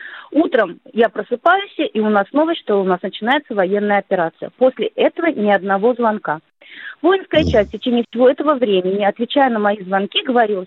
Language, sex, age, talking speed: Russian, female, 30-49, 170 wpm